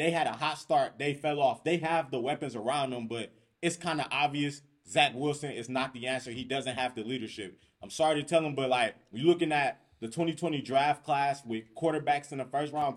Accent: American